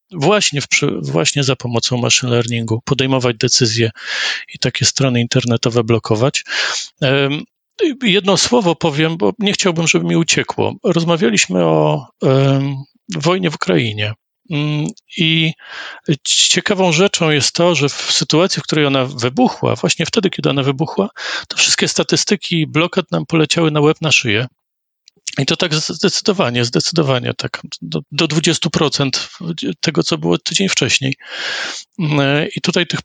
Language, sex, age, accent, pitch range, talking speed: Polish, male, 40-59, native, 125-165 Hz, 135 wpm